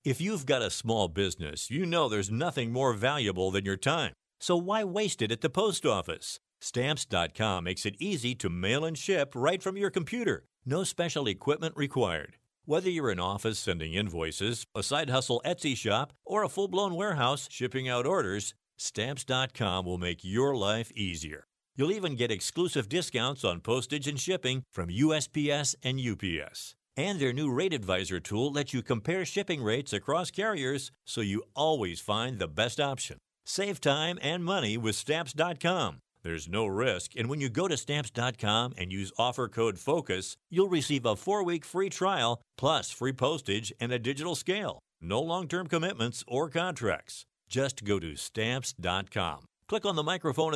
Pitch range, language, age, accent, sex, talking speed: 105-160 Hz, English, 50-69, American, male, 170 wpm